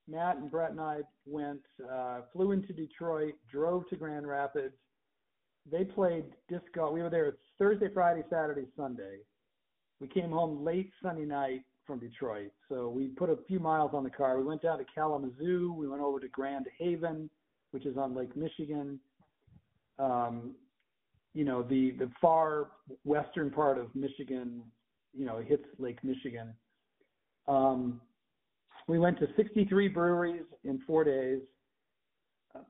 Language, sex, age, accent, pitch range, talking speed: English, male, 50-69, American, 130-165 Hz, 150 wpm